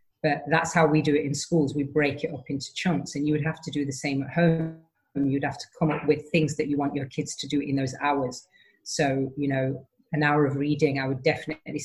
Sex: female